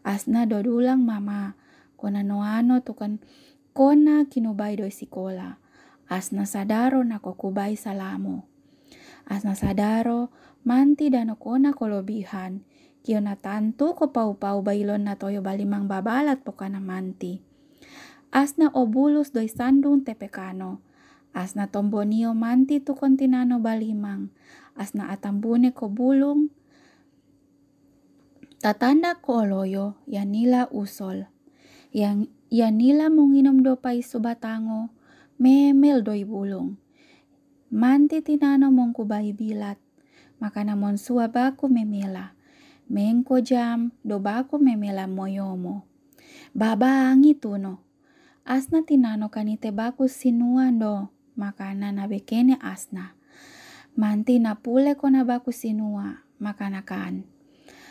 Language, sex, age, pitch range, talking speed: Indonesian, female, 20-39, 205-275 Hz, 95 wpm